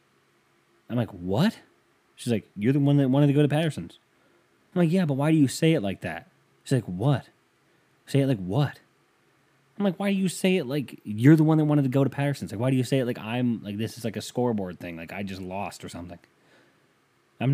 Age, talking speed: 20-39, 245 wpm